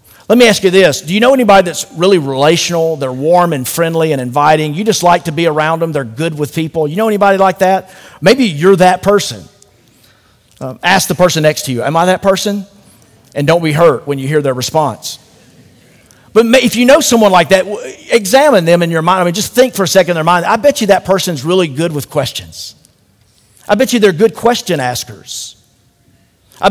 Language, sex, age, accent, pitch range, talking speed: English, male, 40-59, American, 130-175 Hz, 220 wpm